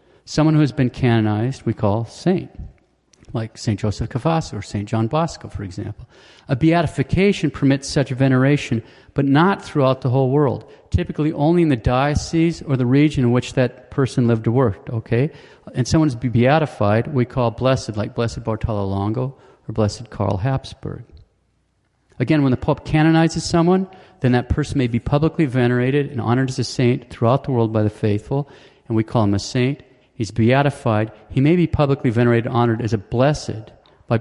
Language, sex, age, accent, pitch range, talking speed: English, male, 40-59, American, 115-145 Hz, 180 wpm